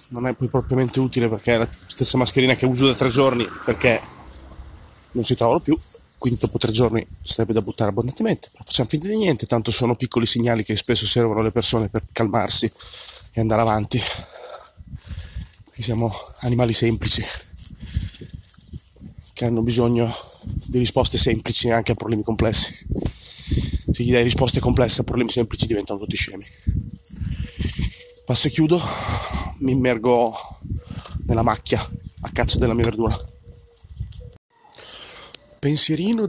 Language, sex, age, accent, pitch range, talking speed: Italian, male, 20-39, native, 110-130 Hz, 140 wpm